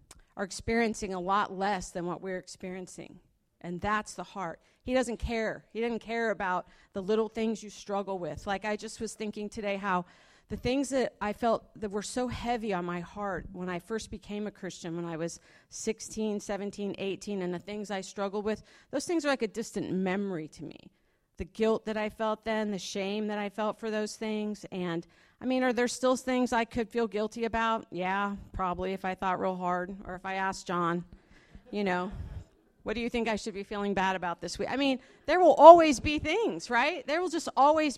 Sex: female